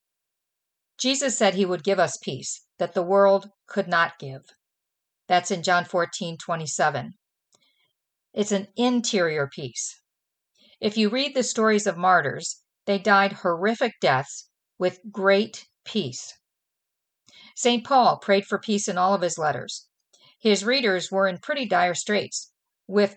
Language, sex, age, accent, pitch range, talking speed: English, female, 50-69, American, 180-225 Hz, 140 wpm